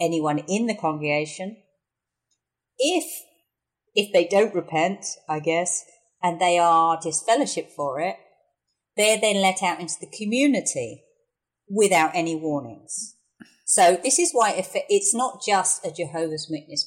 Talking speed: 140 wpm